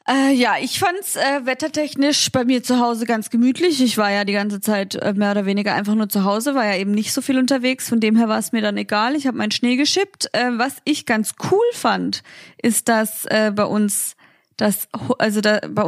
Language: German